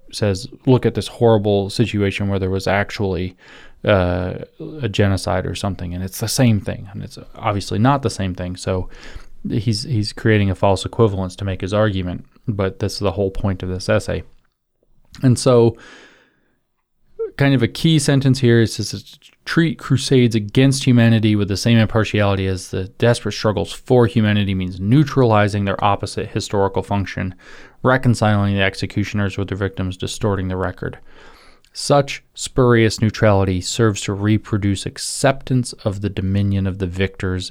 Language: English